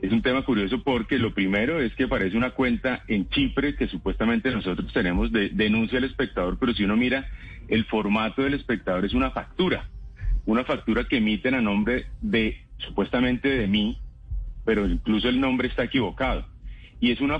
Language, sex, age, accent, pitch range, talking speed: Spanish, male, 40-59, Colombian, 105-135 Hz, 180 wpm